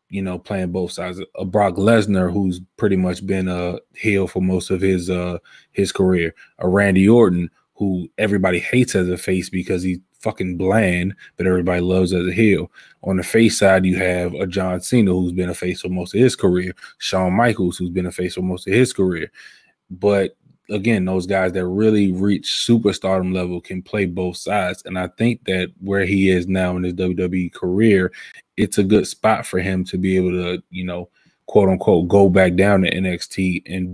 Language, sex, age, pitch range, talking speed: English, male, 20-39, 90-100 Hz, 200 wpm